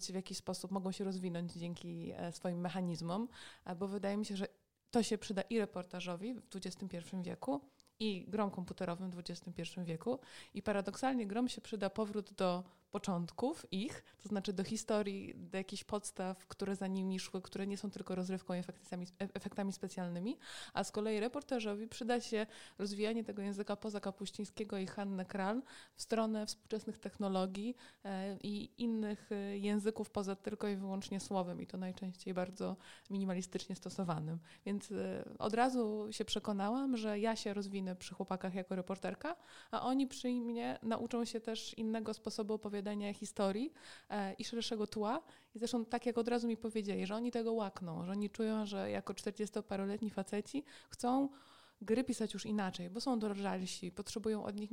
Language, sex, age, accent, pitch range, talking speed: Polish, female, 20-39, native, 190-220 Hz, 160 wpm